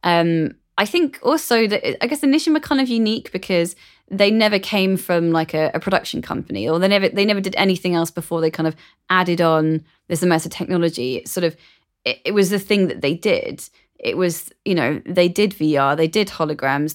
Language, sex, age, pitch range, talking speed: English, female, 20-39, 155-195 Hz, 210 wpm